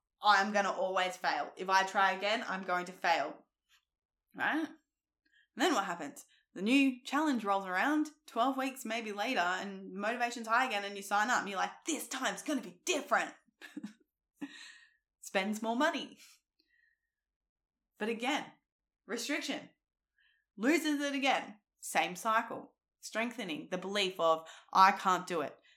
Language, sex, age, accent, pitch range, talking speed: English, female, 10-29, Australian, 195-275 Hz, 145 wpm